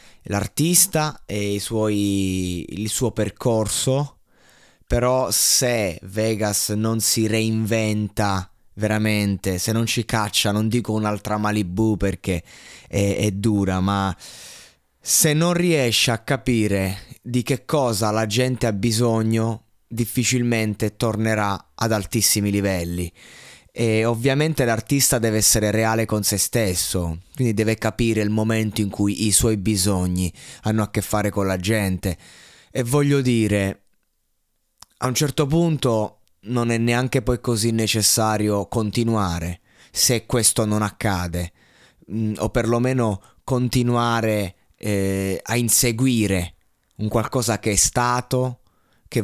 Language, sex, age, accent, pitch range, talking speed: Italian, male, 20-39, native, 100-120 Hz, 120 wpm